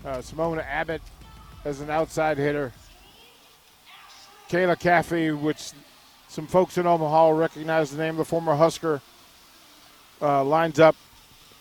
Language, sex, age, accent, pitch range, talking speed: English, male, 50-69, American, 150-175 Hz, 125 wpm